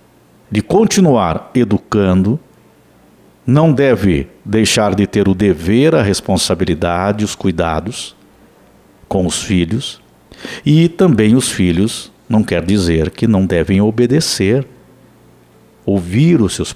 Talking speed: 110 wpm